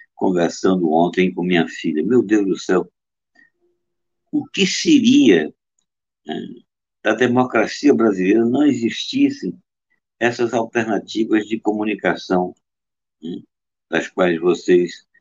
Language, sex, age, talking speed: Portuguese, male, 60-79, 105 wpm